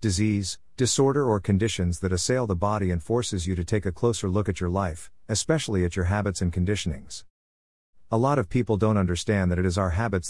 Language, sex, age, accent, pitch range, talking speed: English, male, 50-69, American, 90-115 Hz, 210 wpm